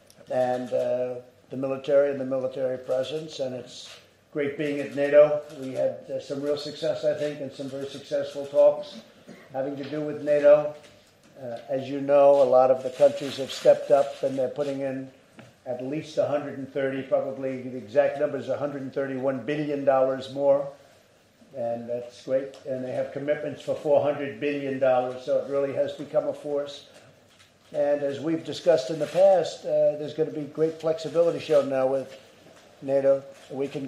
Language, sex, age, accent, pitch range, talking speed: English, male, 50-69, American, 135-150 Hz, 170 wpm